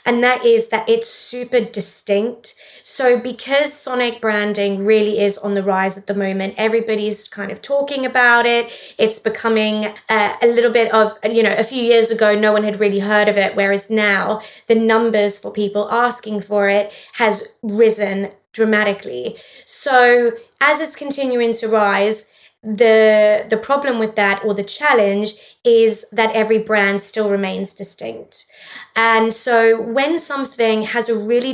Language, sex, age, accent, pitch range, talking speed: English, female, 20-39, British, 205-235 Hz, 160 wpm